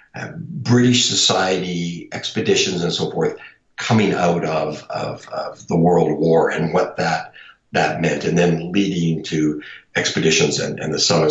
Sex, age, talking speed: male, 60-79, 150 wpm